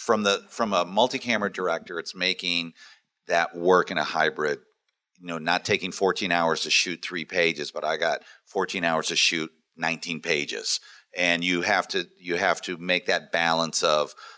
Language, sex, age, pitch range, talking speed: English, male, 50-69, 85-125 Hz, 180 wpm